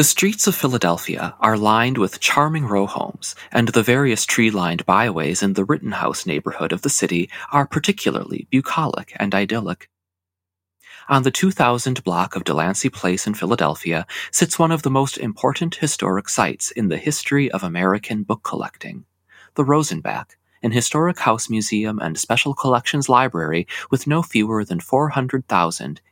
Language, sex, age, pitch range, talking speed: English, male, 30-49, 95-140 Hz, 150 wpm